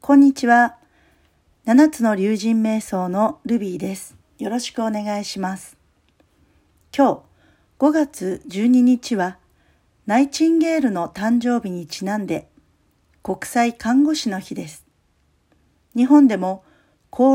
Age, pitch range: 50-69, 185-255 Hz